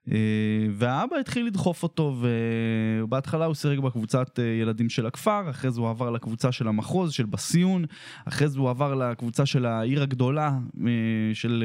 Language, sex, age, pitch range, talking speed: Hebrew, male, 20-39, 120-150 Hz, 155 wpm